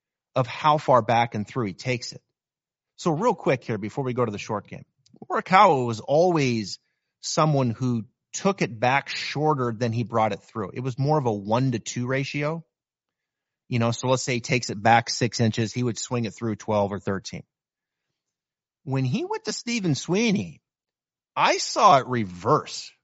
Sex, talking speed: male, 190 wpm